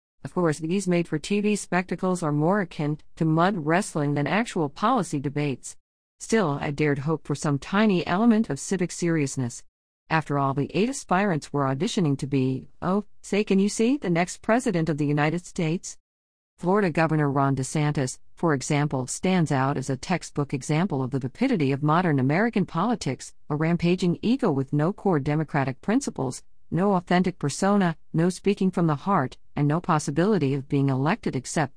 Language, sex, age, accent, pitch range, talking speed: English, female, 50-69, American, 145-195 Hz, 170 wpm